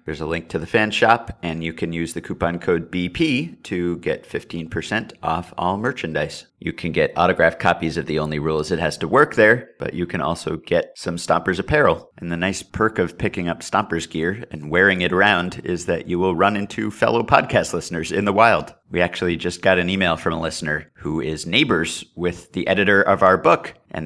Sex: male